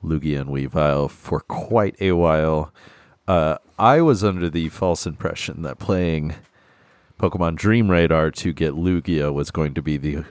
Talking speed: 155 wpm